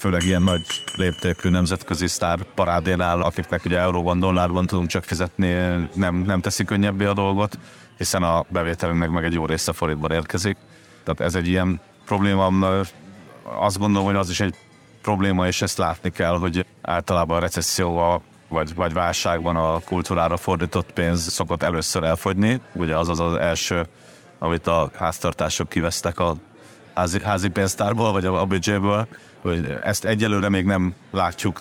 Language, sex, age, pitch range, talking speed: Hungarian, male, 30-49, 85-95 Hz, 150 wpm